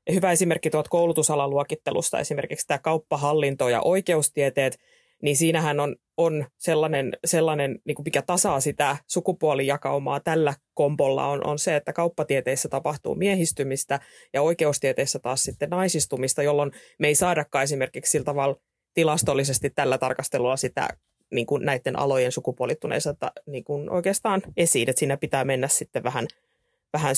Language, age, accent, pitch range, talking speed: Finnish, 30-49, native, 135-160 Hz, 135 wpm